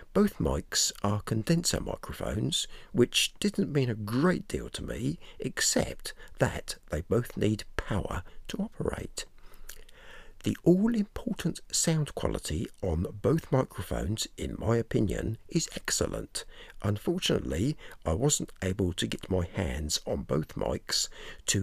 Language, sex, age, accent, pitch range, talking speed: English, male, 60-79, British, 95-150 Hz, 130 wpm